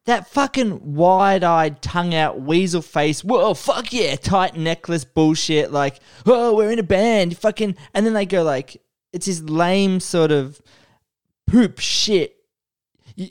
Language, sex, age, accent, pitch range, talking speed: English, male, 20-39, Australian, 145-200 Hz, 145 wpm